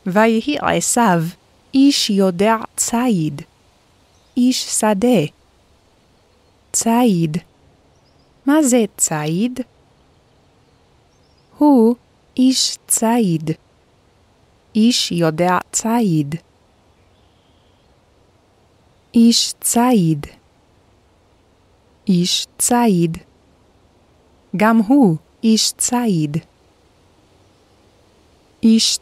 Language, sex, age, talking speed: Hebrew, female, 30-49, 55 wpm